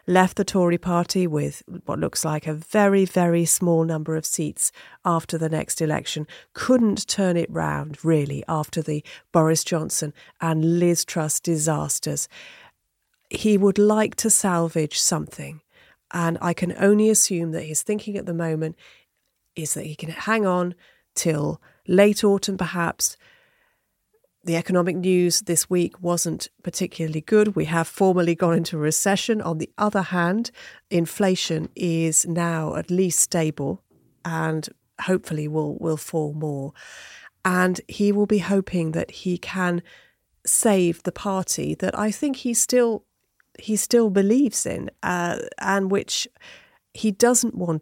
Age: 40-59